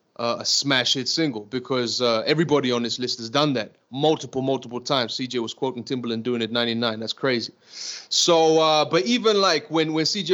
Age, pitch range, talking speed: 30-49, 130-165 Hz, 195 wpm